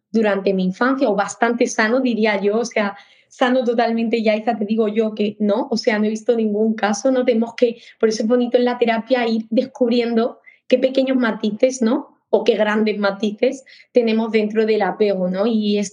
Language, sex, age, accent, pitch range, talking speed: Spanish, female, 20-39, Spanish, 215-245 Hz, 195 wpm